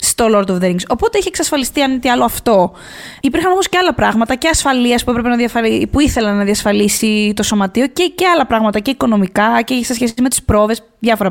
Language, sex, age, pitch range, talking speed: Greek, female, 20-39, 220-300 Hz, 220 wpm